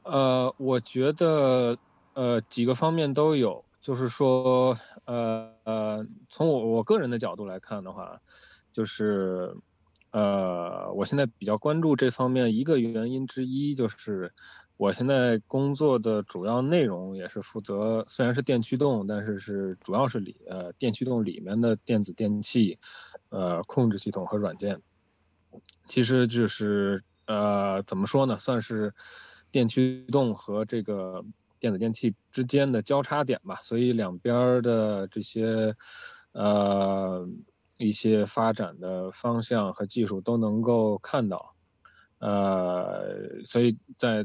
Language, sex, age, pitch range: Chinese, male, 20-39, 105-125 Hz